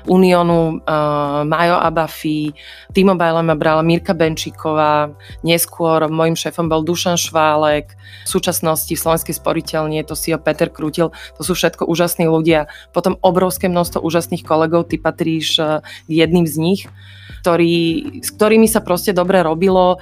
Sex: female